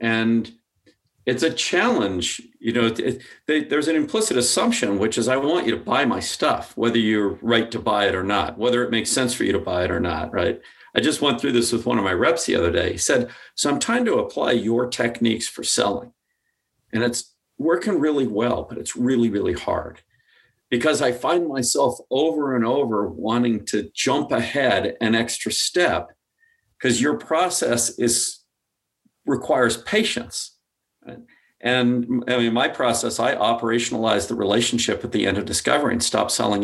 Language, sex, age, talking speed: English, male, 50-69, 180 wpm